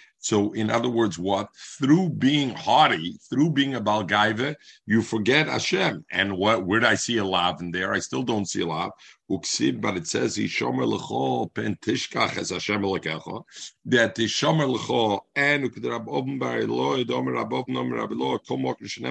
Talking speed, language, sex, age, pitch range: 105 wpm, English, male, 50-69, 95-140 Hz